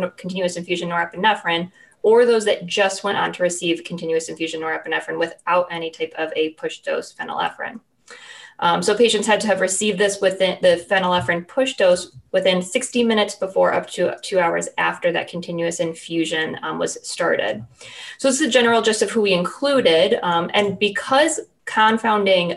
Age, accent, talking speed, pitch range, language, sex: 20-39, American, 170 wpm, 170-215 Hz, English, female